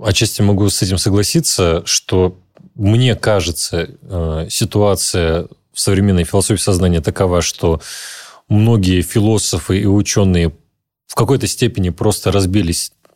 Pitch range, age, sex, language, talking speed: 90-115 Hz, 30-49, male, Russian, 110 wpm